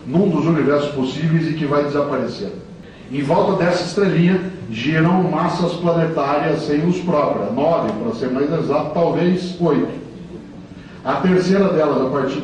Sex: male